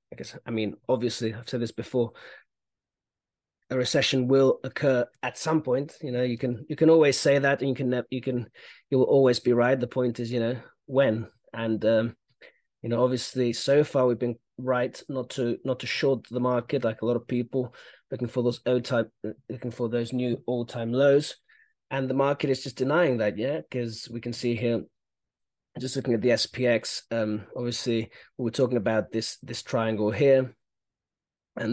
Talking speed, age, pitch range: 195 wpm, 30-49, 115-130 Hz